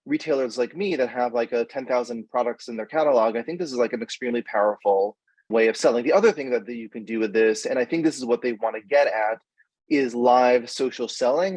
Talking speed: 240 wpm